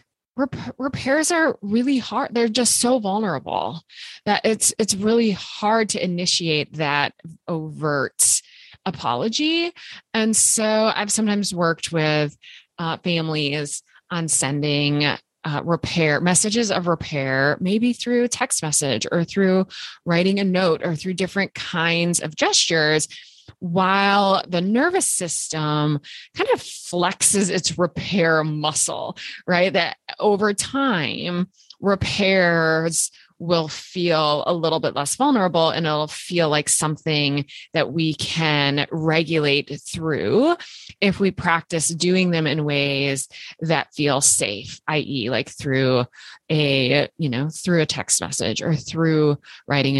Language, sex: English, female